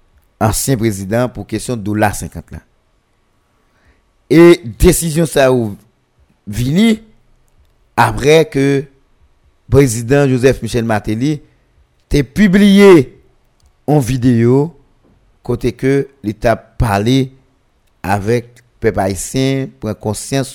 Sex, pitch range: male, 105-145 Hz